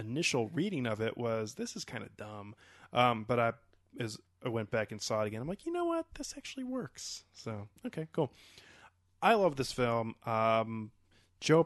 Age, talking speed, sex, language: 20-39, 195 wpm, male, English